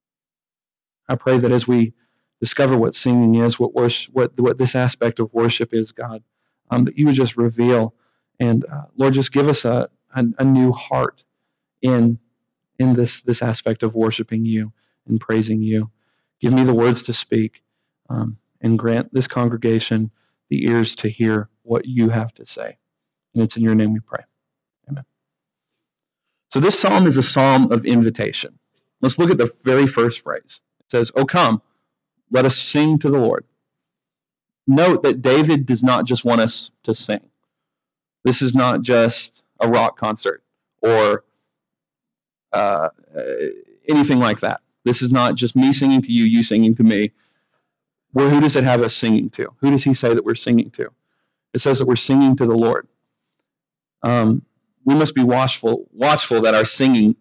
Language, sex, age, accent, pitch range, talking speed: English, male, 40-59, American, 115-135 Hz, 175 wpm